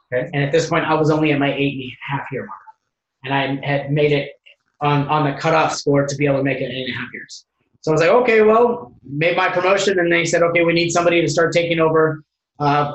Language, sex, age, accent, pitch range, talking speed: English, male, 20-39, American, 150-170 Hz, 275 wpm